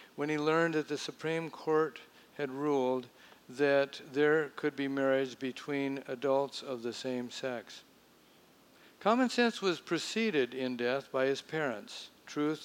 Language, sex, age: English, male, 60-79